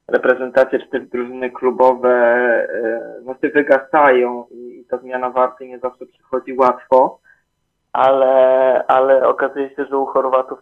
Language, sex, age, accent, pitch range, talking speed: Polish, male, 20-39, native, 125-130 Hz, 130 wpm